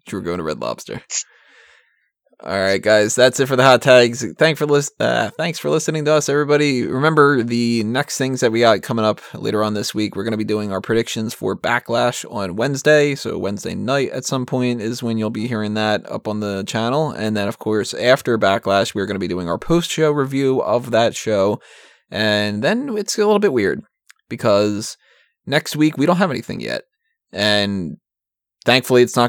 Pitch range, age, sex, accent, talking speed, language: 110-145 Hz, 20-39, male, American, 205 wpm, English